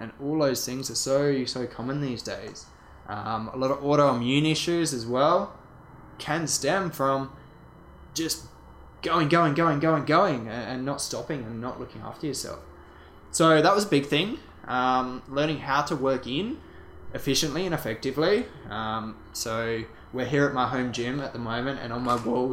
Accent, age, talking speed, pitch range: Australian, 10-29, 175 wpm, 115-145 Hz